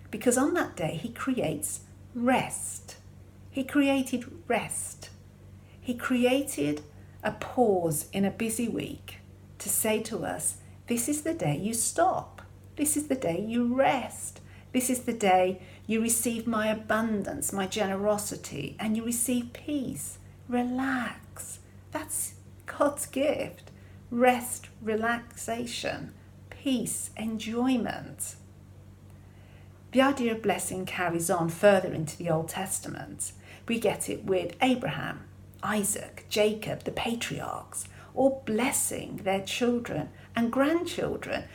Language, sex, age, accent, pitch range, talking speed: English, female, 50-69, British, 155-245 Hz, 115 wpm